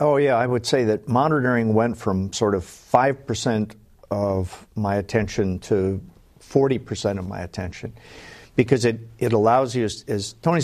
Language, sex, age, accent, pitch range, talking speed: English, male, 50-69, American, 110-150 Hz, 160 wpm